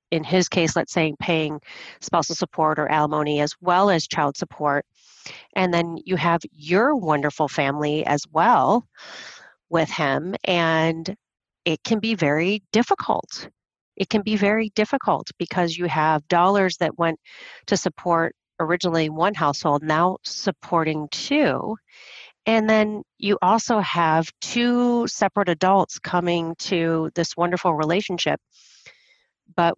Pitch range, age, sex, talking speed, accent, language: 155-200 Hz, 40-59, female, 130 wpm, American, English